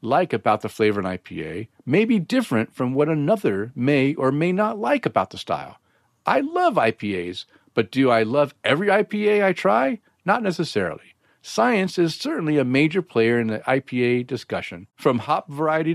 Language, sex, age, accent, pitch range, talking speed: English, male, 50-69, American, 120-160 Hz, 175 wpm